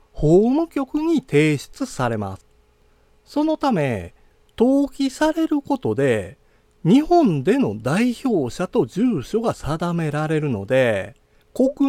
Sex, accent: male, native